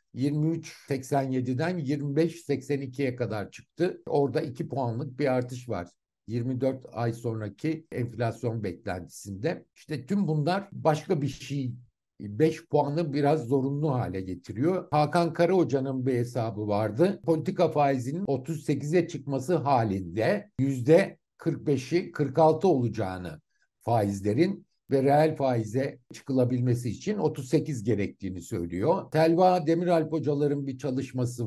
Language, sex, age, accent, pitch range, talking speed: Turkish, male, 60-79, native, 120-155 Hz, 105 wpm